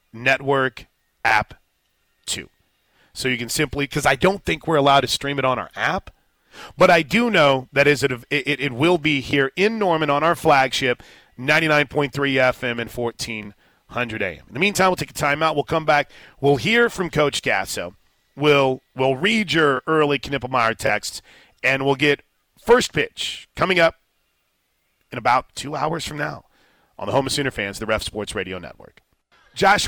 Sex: male